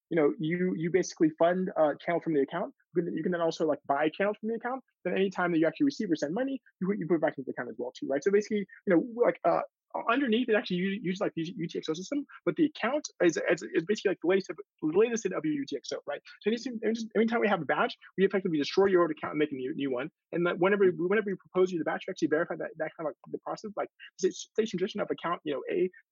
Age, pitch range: 20-39, 155-215 Hz